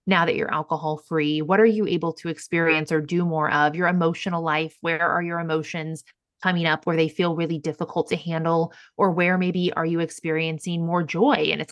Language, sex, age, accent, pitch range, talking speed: English, female, 20-39, American, 160-200 Hz, 205 wpm